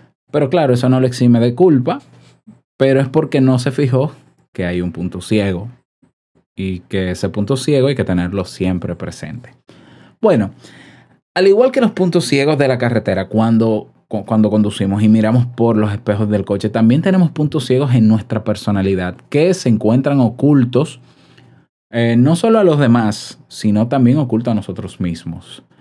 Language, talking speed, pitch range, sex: Spanish, 165 wpm, 105-135 Hz, male